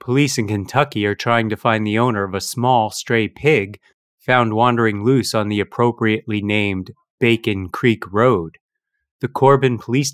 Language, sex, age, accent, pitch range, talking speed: English, male, 30-49, American, 100-125 Hz, 160 wpm